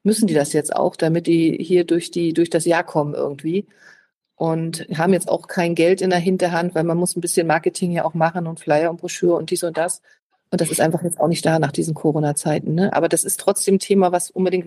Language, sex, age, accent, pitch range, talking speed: German, female, 40-59, German, 160-180 Hz, 250 wpm